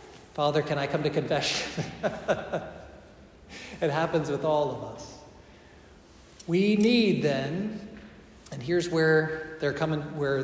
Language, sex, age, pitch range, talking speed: English, male, 40-59, 145-195 Hz, 120 wpm